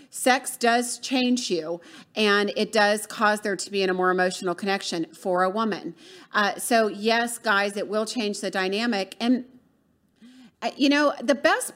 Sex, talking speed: female, 165 wpm